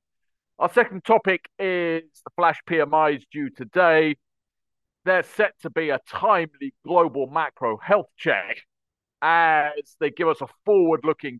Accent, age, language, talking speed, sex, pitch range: British, 40-59, English, 130 wpm, male, 135-170 Hz